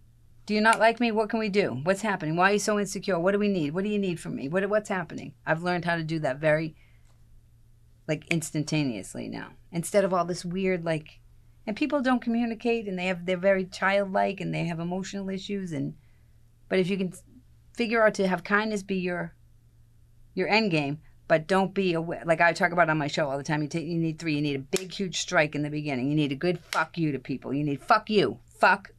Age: 40-59